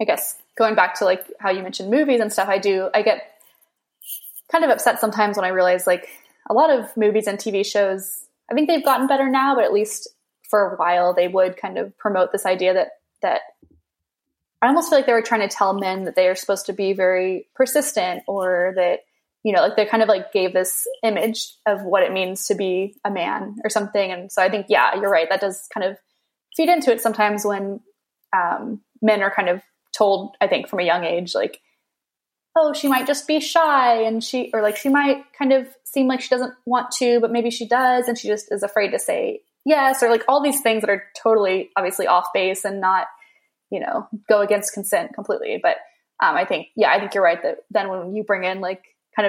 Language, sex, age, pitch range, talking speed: English, female, 10-29, 195-255 Hz, 230 wpm